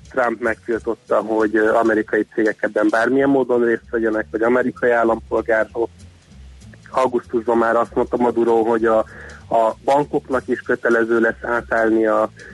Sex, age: male, 30-49